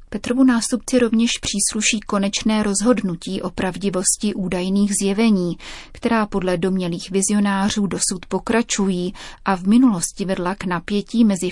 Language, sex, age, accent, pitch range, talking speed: Czech, female, 30-49, native, 185-215 Hz, 120 wpm